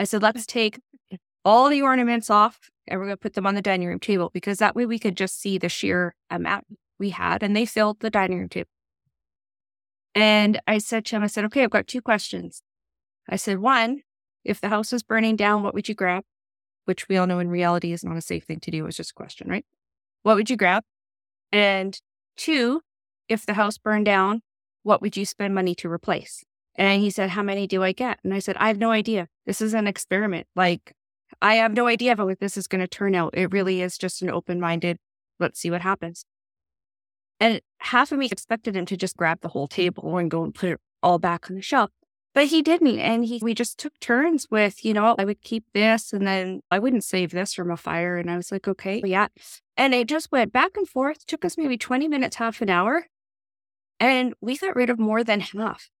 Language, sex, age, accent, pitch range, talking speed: English, female, 20-39, American, 180-230 Hz, 230 wpm